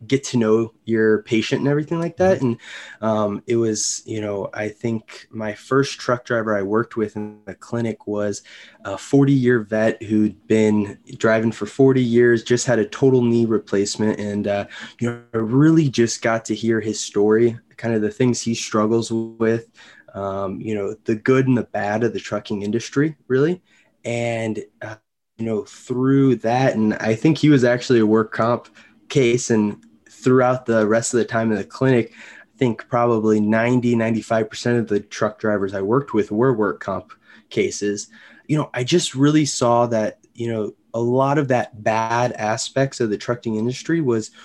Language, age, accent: English, 20-39, American